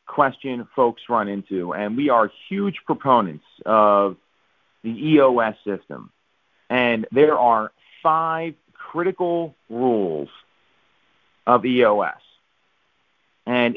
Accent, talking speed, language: American, 95 wpm, English